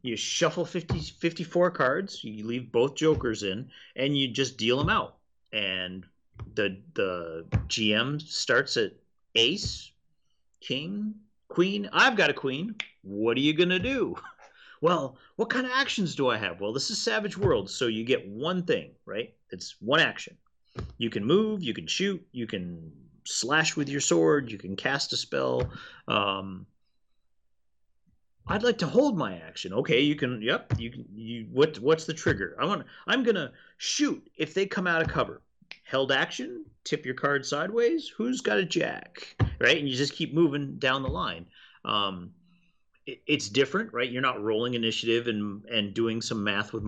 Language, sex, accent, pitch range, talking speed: English, male, American, 105-170 Hz, 175 wpm